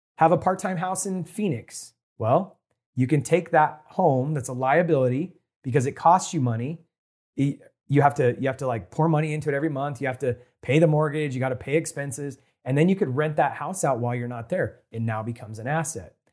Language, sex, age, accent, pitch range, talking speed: English, male, 30-49, American, 125-165 Hz, 225 wpm